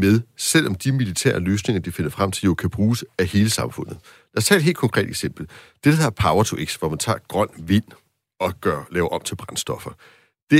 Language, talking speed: Danish, 220 wpm